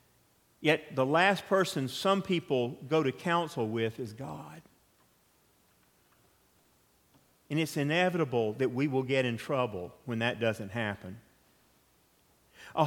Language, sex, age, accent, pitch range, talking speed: English, male, 50-69, American, 120-160 Hz, 120 wpm